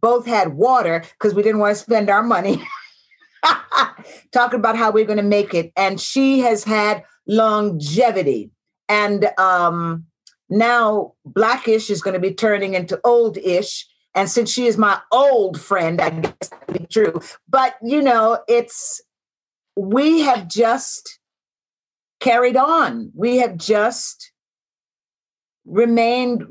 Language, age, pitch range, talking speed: English, 50-69, 205-255 Hz, 130 wpm